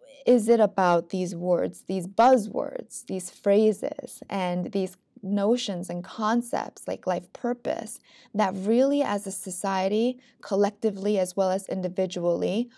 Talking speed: 125 wpm